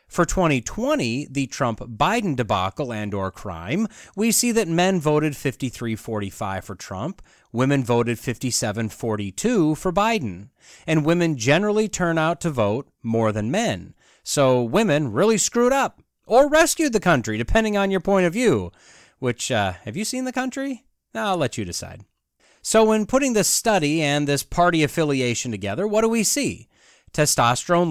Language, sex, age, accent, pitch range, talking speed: English, male, 30-49, American, 115-190 Hz, 155 wpm